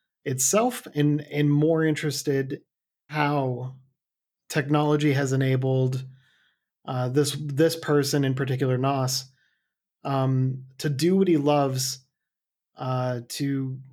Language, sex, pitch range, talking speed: English, male, 130-150 Hz, 105 wpm